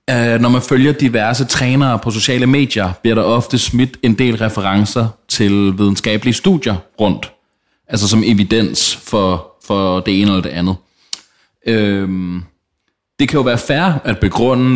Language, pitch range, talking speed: Danish, 95-125 Hz, 155 wpm